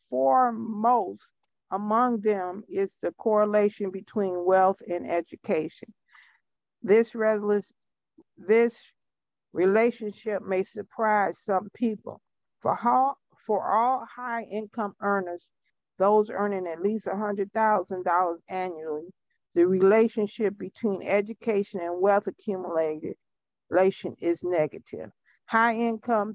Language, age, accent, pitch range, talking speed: English, 50-69, American, 185-225 Hz, 85 wpm